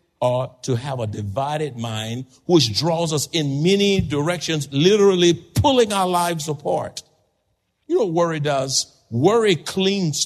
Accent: American